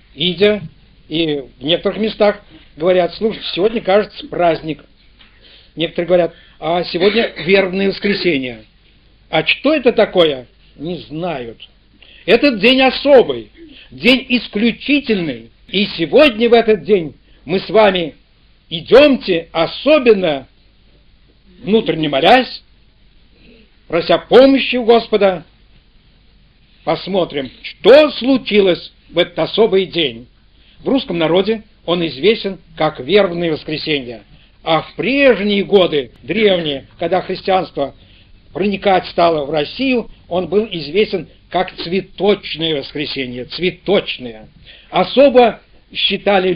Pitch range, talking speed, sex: 155-210 Hz, 100 wpm, male